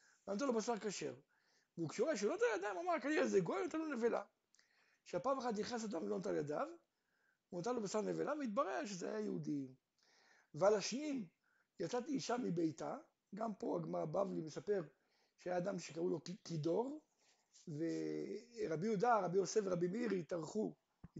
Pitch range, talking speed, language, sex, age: 180-265 Hz, 145 wpm, Hebrew, male, 60-79